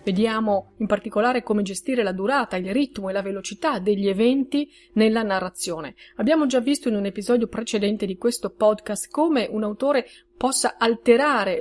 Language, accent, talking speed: Italian, native, 160 wpm